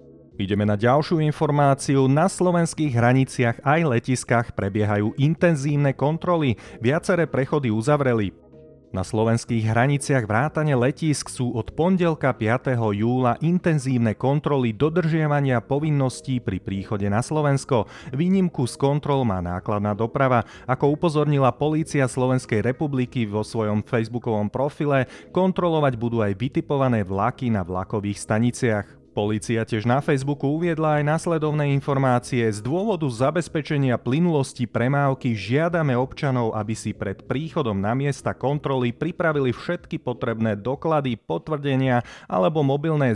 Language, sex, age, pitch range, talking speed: Slovak, male, 30-49, 115-150 Hz, 120 wpm